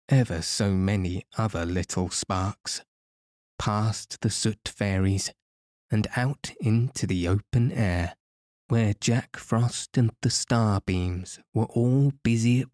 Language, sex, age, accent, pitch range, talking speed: English, male, 20-39, British, 90-115 Hz, 120 wpm